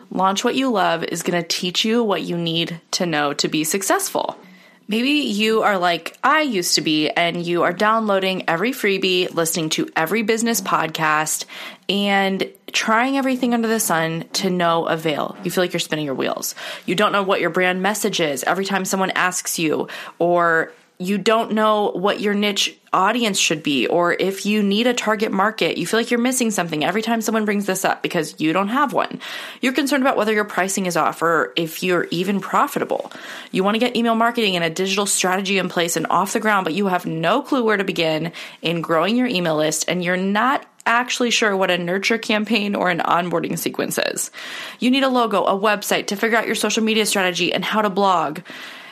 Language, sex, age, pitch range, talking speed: English, female, 20-39, 170-225 Hz, 210 wpm